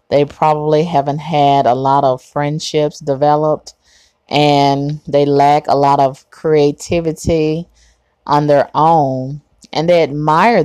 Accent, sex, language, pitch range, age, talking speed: American, female, English, 130-155 Hz, 30-49, 125 wpm